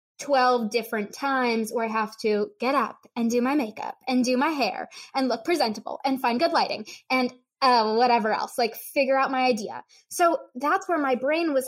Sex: female